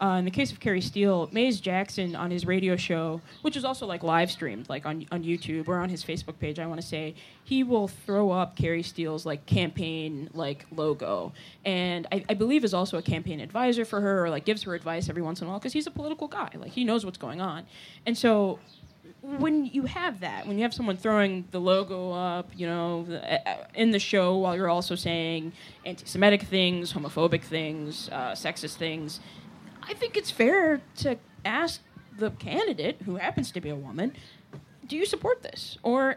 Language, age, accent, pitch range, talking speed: English, 10-29, American, 170-230 Hz, 205 wpm